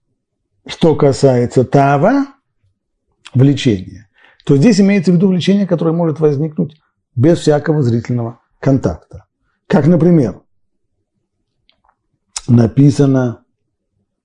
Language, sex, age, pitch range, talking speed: Russian, male, 40-59, 110-145 Hz, 85 wpm